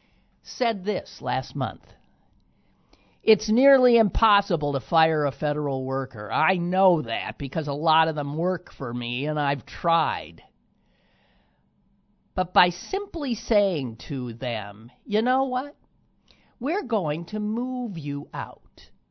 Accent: American